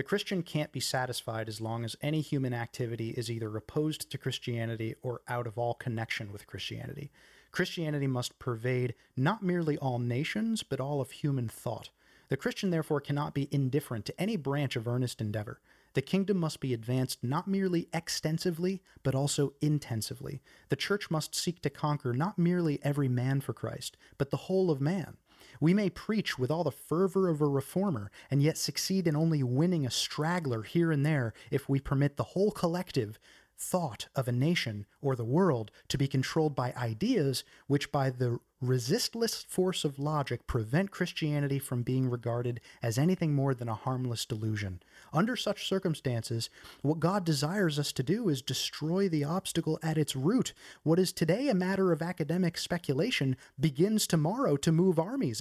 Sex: male